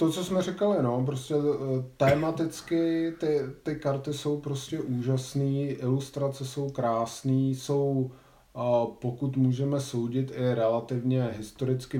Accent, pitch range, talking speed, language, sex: native, 115-130 Hz, 115 wpm, Czech, male